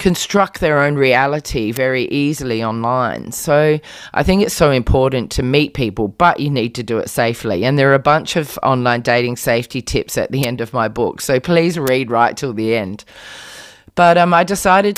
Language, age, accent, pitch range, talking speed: English, 30-49, Australian, 120-150 Hz, 200 wpm